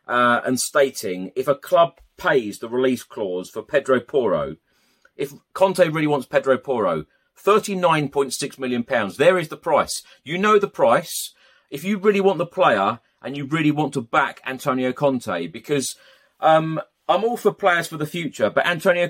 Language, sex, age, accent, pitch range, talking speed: English, male, 30-49, British, 120-150 Hz, 180 wpm